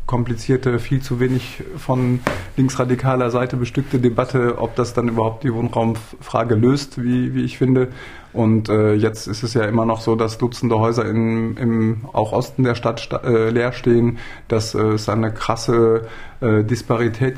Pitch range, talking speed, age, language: 115-125 Hz, 150 wpm, 20-39, German